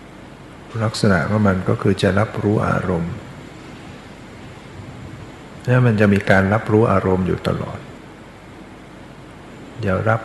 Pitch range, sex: 95-110 Hz, male